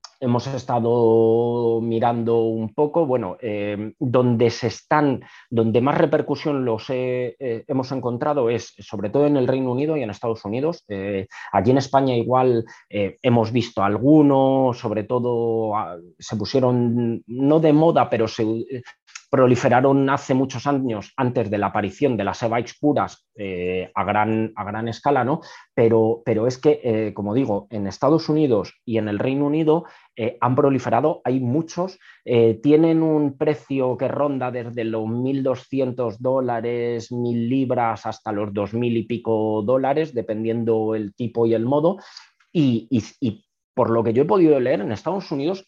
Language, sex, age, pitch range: Spanish, male, 30-49, 115-140 Hz